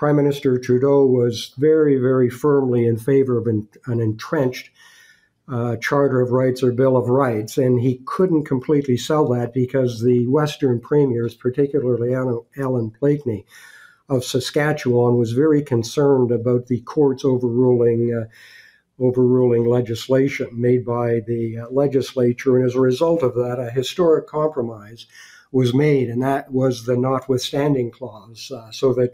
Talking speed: 140 wpm